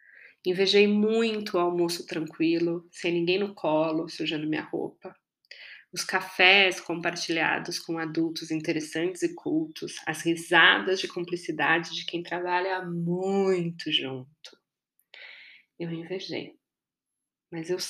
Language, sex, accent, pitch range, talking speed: Portuguese, female, Brazilian, 165-195 Hz, 110 wpm